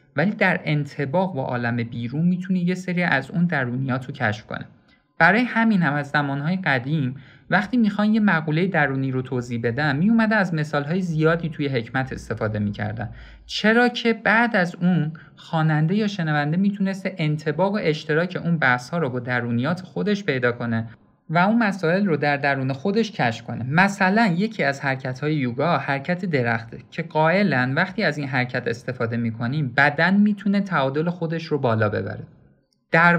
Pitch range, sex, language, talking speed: 125-180 Hz, male, Persian, 160 wpm